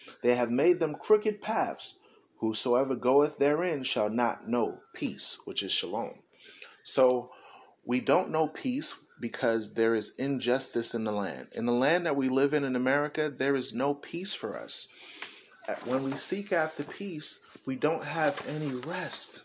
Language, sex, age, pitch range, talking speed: English, male, 30-49, 120-150 Hz, 165 wpm